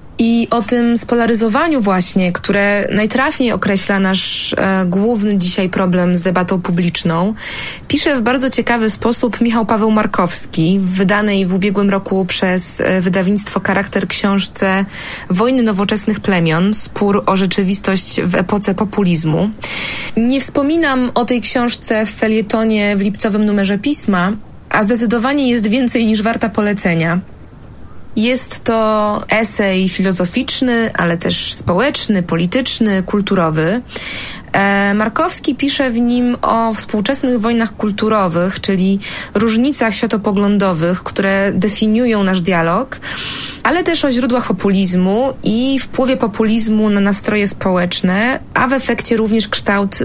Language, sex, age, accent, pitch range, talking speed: Polish, female, 20-39, native, 195-235 Hz, 120 wpm